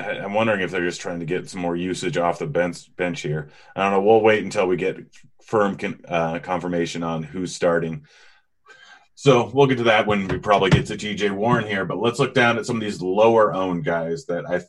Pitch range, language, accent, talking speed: 90-110 Hz, English, American, 230 wpm